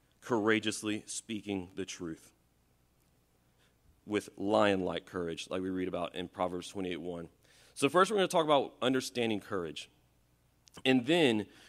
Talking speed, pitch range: 135 wpm, 100-125 Hz